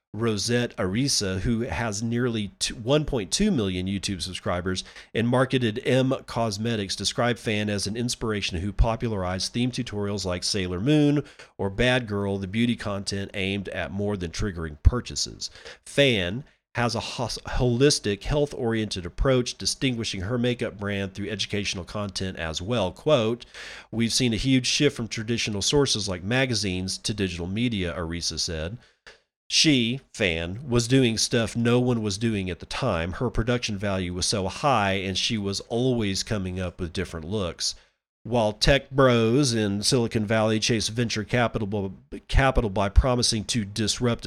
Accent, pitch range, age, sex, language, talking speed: American, 95-120 Hz, 40-59, male, English, 145 wpm